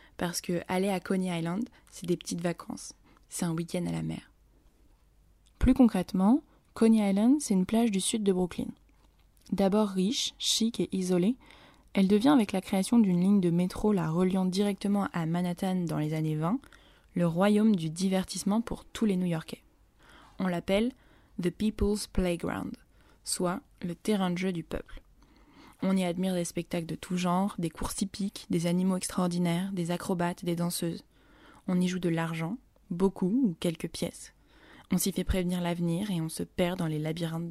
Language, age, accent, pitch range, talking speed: French, 20-39, French, 175-205 Hz, 180 wpm